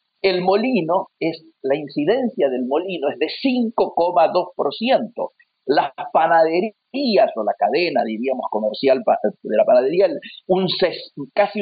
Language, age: Spanish, 50-69